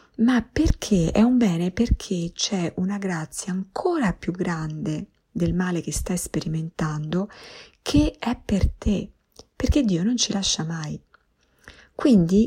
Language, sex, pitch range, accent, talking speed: Italian, female, 165-205 Hz, native, 135 wpm